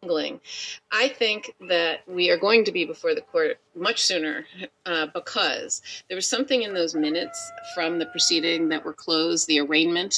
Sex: female